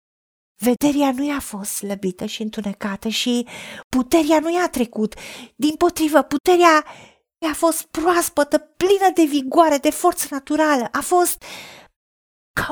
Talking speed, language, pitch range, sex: 125 wpm, Romanian, 245-315 Hz, female